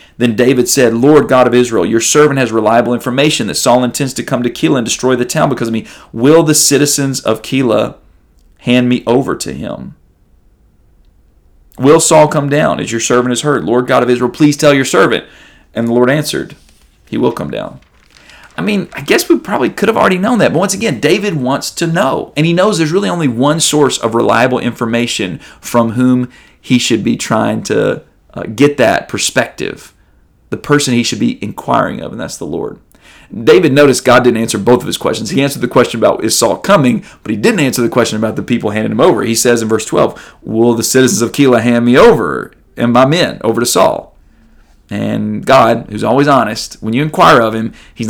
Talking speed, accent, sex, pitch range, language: 215 wpm, American, male, 115-140 Hz, English